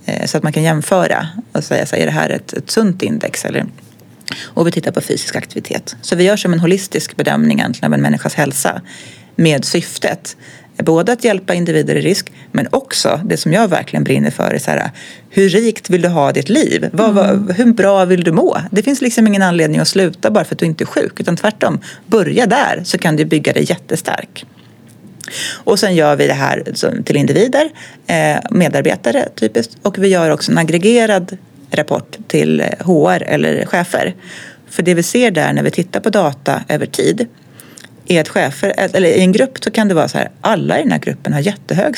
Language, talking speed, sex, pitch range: Swedish, 195 wpm, female, 160-220 Hz